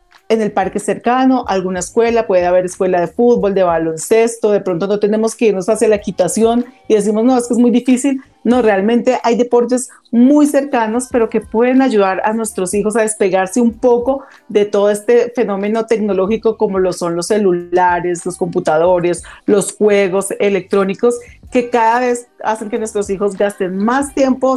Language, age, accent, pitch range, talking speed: Spanish, 40-59, Colombian, 195-240 Hz, 175 wpm